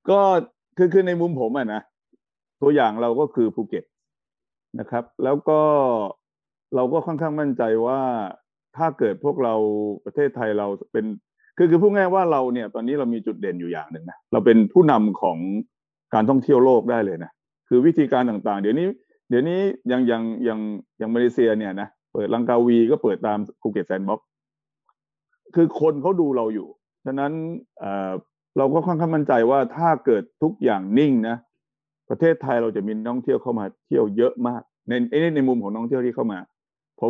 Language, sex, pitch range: Thai, male, 105-145 Hz